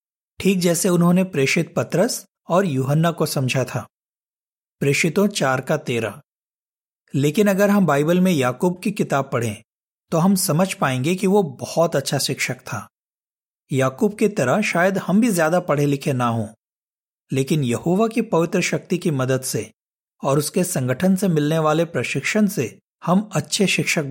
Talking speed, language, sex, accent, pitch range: 155 wpm, Hindi, male, native, 135-190 Hz